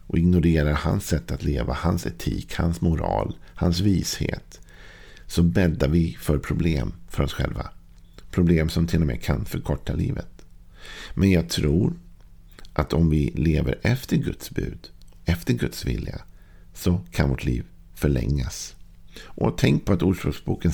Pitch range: 75-90 Hz